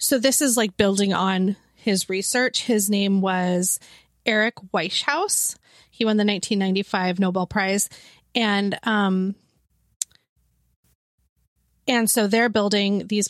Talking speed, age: 115 wpm, 20-39